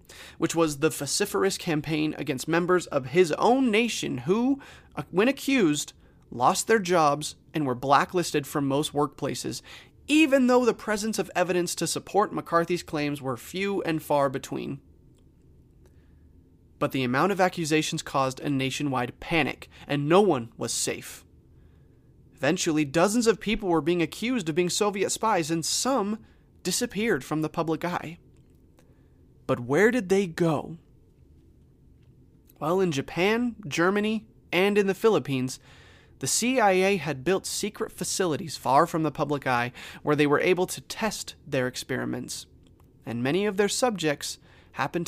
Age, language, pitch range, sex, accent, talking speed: 30-49, English, 130-190 Hz, male, American, 145 wpm